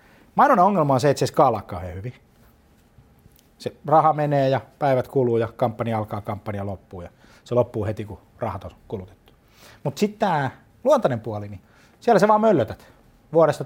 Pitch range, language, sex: 105-140 Hz, Finnish, male